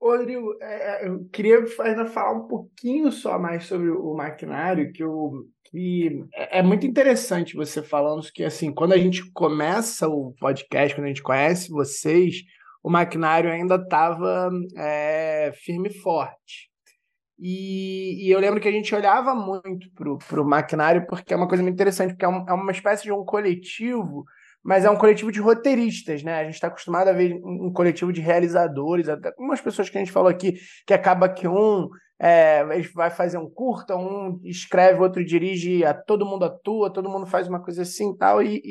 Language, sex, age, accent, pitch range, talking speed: Portuguese, male, 20-39, Brazilian, 165-205 Hz, 180 wpm